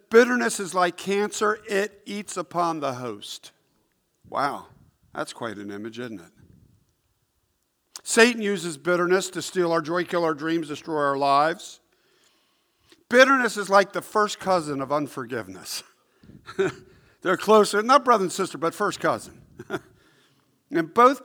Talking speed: 135 wpm